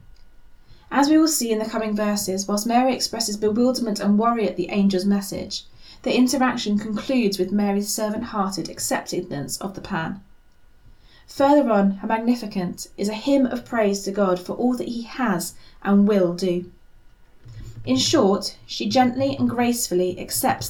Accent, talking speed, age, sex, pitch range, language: British, 155 wpm, 30-49, female, 185-240 Hz, English